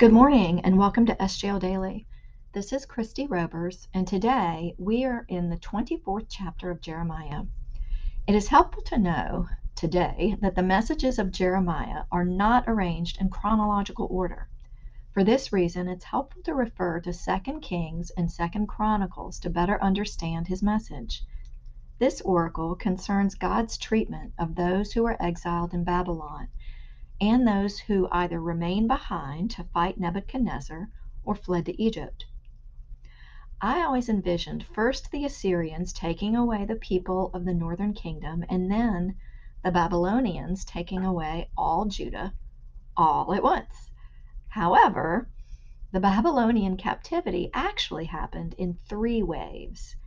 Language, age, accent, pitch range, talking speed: English, 40-59, American, 170-210 Hz, 140 wpm